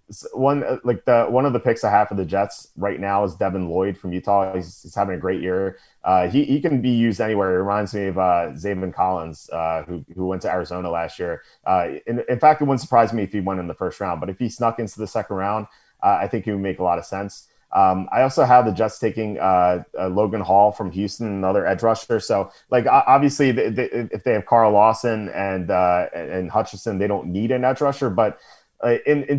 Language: English